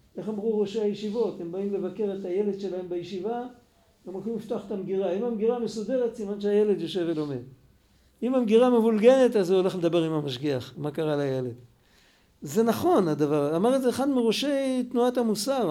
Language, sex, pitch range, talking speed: Hebrew, male, 195-245 Hz, 170 wpm